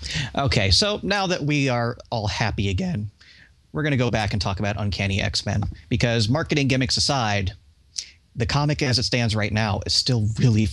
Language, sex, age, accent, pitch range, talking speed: English, male, 30-49, American, 100-125 Hz, 185 wpm